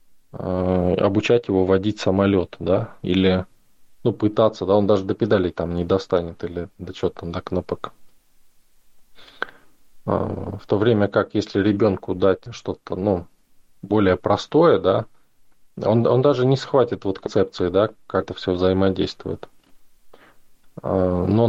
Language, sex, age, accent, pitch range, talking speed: Russian, male, 20-39, native, 95-115 Hz, 130 wpm